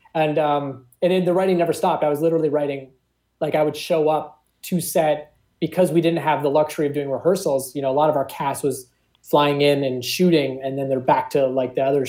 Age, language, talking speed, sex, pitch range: 30-49, English, 240 wpm, male, 135-160 Hz